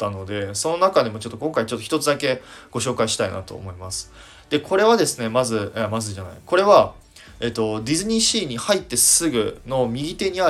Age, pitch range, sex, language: 20-39, 100-125 Hz, male, Japanese